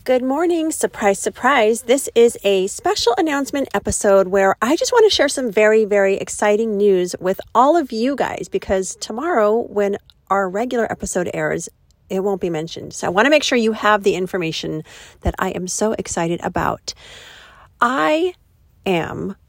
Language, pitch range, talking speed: English, 180-225 Hz, 170 wpm